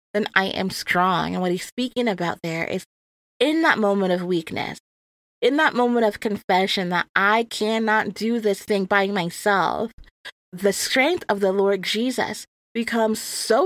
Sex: female